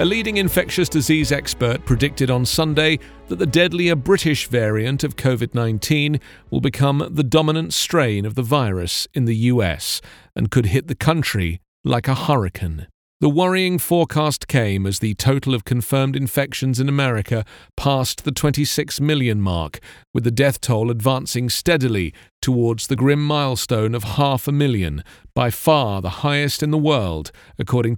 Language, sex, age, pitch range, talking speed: English, male, 40-59, 115-150 Hz, 155 wpm